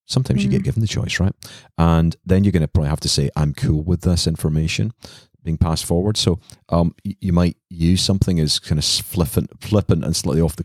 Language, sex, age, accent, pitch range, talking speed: English, male, 30-49, British, 70-85 Hz, 225 wpm